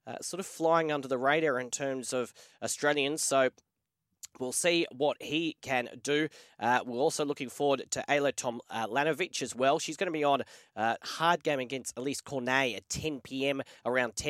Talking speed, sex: 180 wpm, male